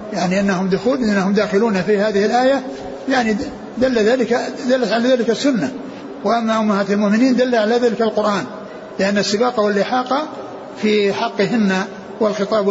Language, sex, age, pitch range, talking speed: Arabic, male, 60-79, 195-230 Hz, 130 wpm